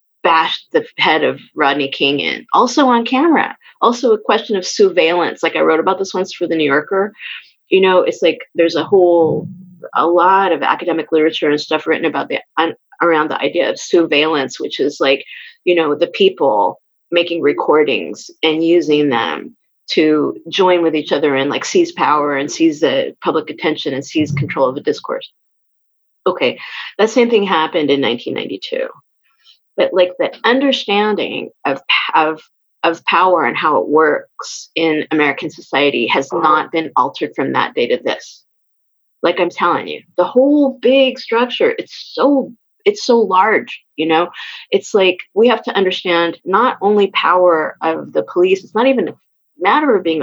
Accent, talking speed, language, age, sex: American, 170 wpm, English, 30-49, female